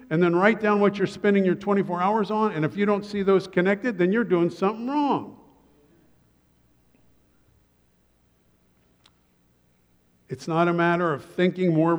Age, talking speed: 50-69, 150 wpm